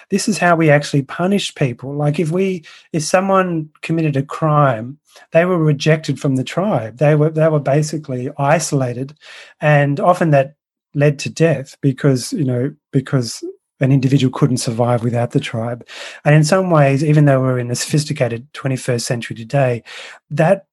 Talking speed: 170 wpm